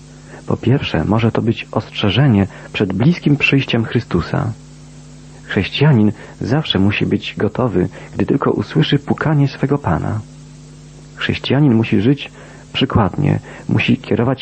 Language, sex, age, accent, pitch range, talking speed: Polish, male, 40-59, native, 105-140 Hz, 110 wpm